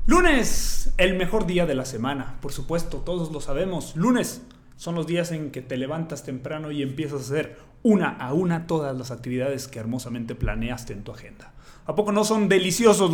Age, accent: 30-49, Mexican